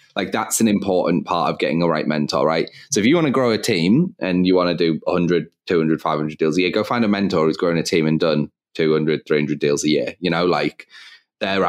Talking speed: 250 wpm